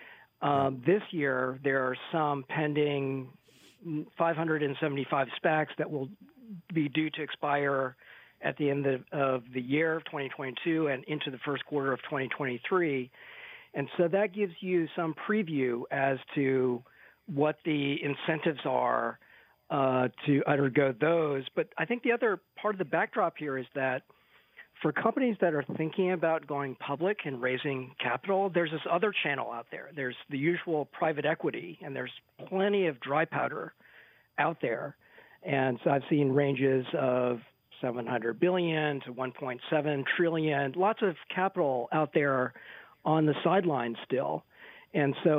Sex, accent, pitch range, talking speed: male, American, 135-165 Hz, 150 wpm